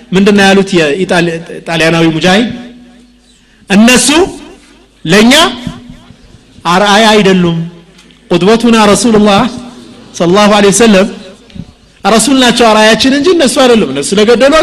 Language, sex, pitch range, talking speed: Amharic, male, 180-245 Hz, 105 wpm